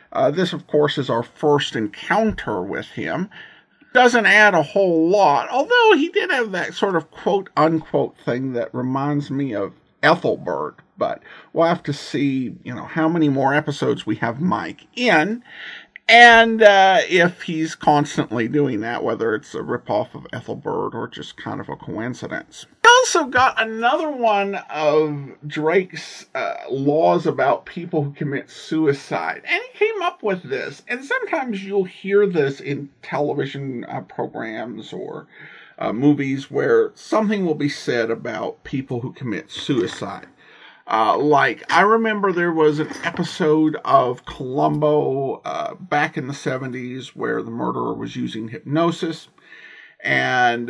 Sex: male